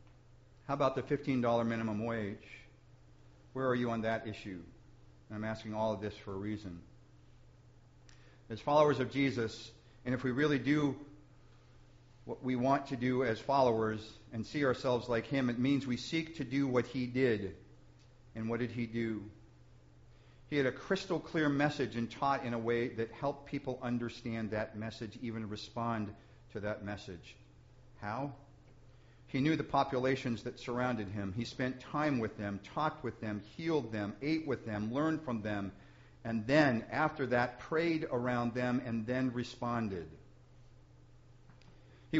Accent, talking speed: American, 160 wpm